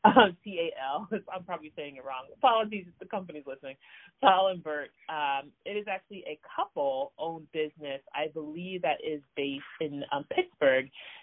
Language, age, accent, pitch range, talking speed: English, 30-49, American, 145-185 Hz, 165 wpm